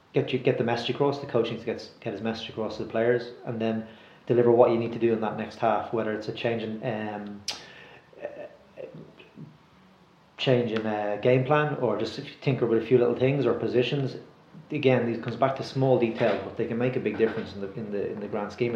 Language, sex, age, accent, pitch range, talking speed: English, male, 30-49, Irish, 105-120 Hz, 235 wpm